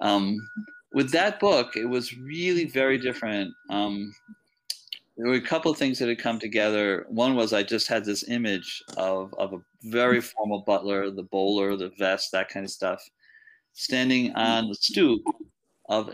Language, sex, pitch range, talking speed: English, male, 100-130 Hz, 170 wpm